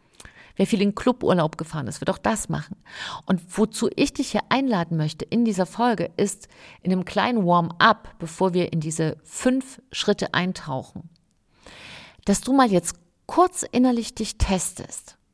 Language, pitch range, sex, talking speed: German, 160-210 Hz, female, 155 wpm